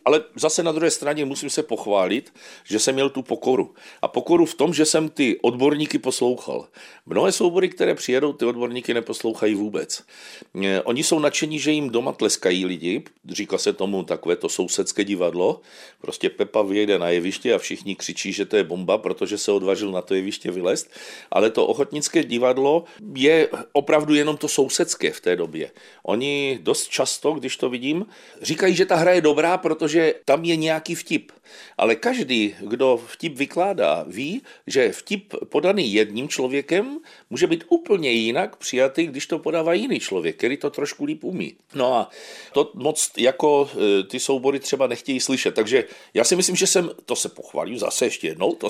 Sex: male